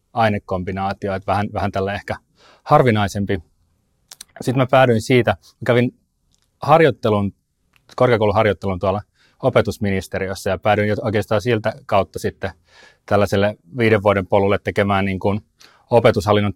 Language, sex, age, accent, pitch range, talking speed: Finnish, male, 30-49, native, 95-110 Hz, 110 wpm